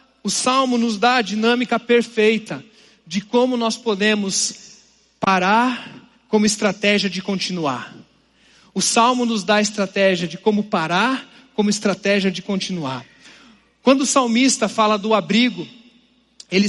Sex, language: male, Portuguese